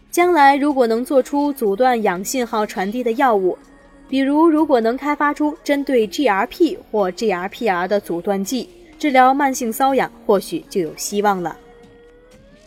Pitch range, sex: 200-300 Hz, female